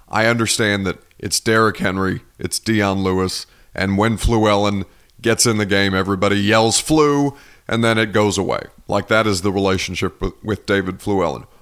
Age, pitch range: 40-59, 100-130 Hz